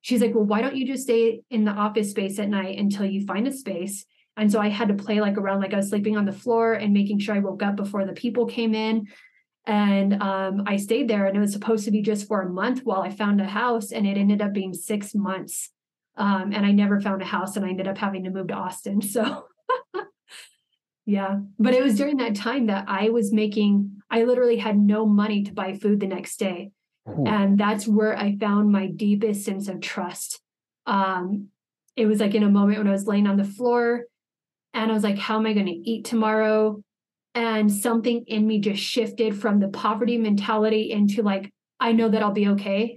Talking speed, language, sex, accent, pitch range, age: 230 wpm, English, female, American, 200-220 Hz, 30-49